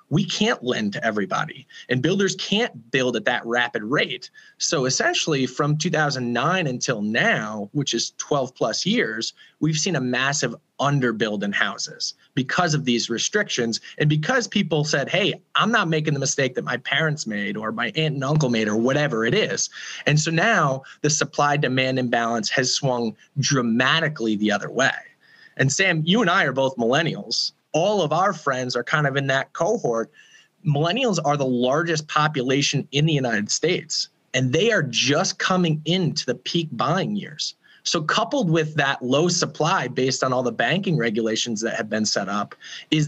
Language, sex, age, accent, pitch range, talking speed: English, male, 20-39, American, 125-165 Hz, 175 wpm